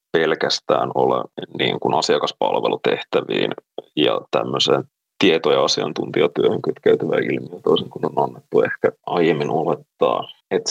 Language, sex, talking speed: Finnish, male, 110 wpm